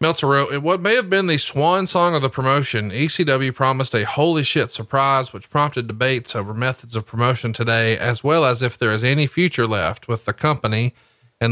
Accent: American